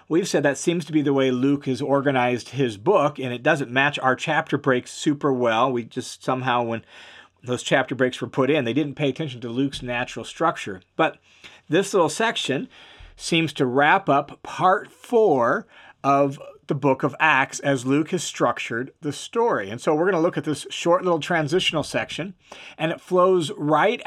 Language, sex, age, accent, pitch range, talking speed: English, male, 40-59, American, 135-165 Hz, 190 wpm